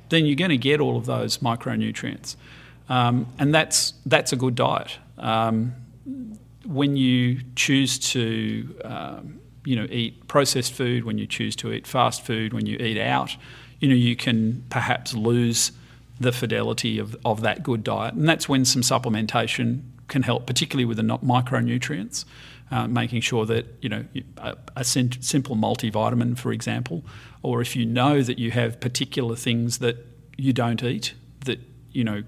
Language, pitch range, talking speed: English, 115-135 Hz, 165 wpm